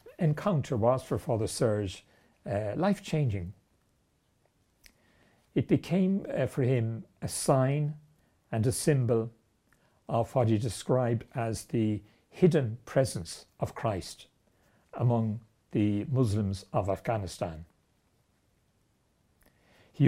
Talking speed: 100 wpm